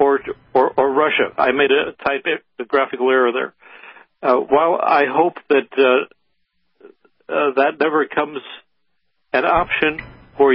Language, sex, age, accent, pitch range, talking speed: English, male, 60-79, American, 130-155 Hz, 140 wpm